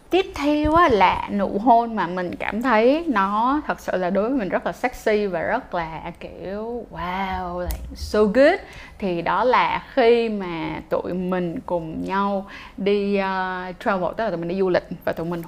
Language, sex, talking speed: Vietnamese, female, 185 wpm